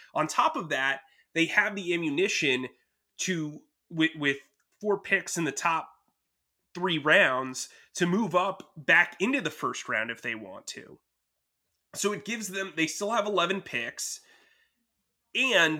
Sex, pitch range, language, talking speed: male, 135-190 Hz, English, 150 wpm